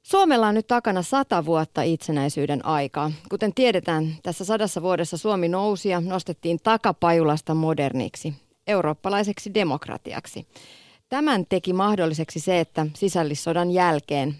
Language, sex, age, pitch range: Finnish, female, 30-49, 155-205 Hz